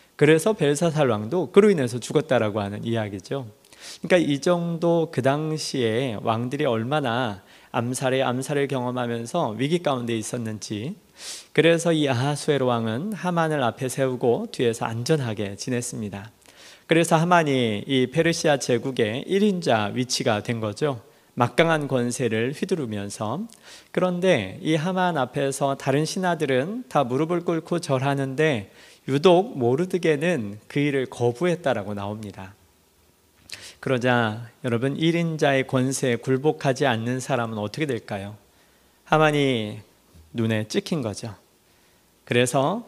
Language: Korean